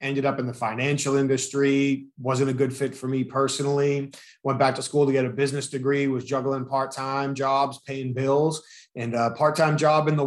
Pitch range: 130-155 Hz